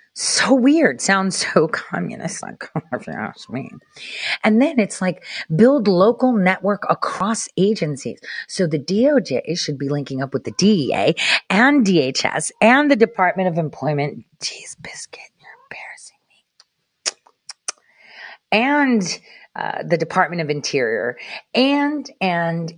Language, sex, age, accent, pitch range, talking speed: English, female, 40-59, American, 155-225 Hz, 130 wpm